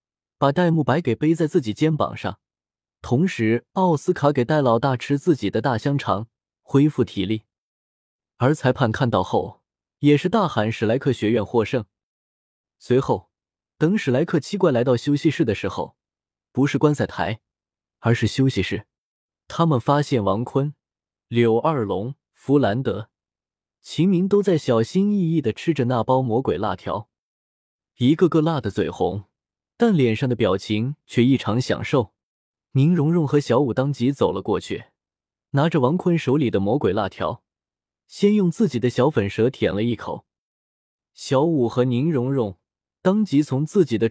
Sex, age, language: male, 20-39, Chinese